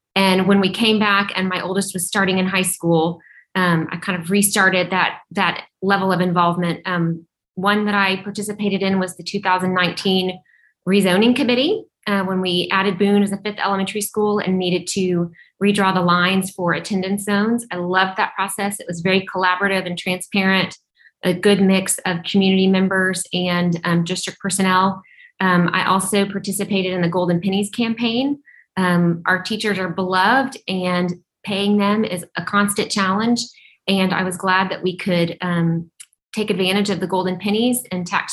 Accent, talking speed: American, 170 wpm